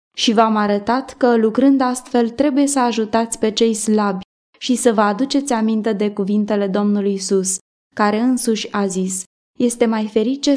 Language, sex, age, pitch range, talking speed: Romanian, female, 20-39, 200-245 Hz, 160 wpm